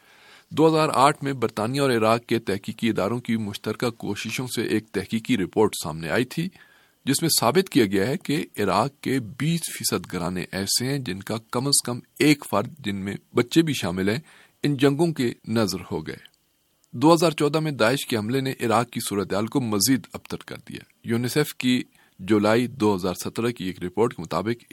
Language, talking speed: Urdu, 185 wpm